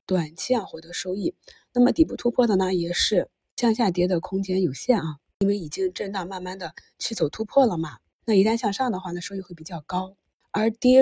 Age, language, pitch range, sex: 20-39, Chinese, 175-235 Hz, female